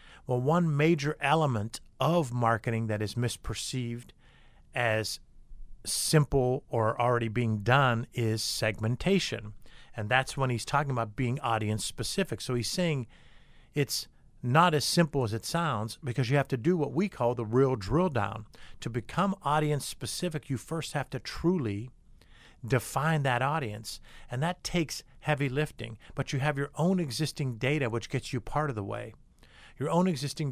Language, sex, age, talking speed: English, male, 50-69, 160 wpm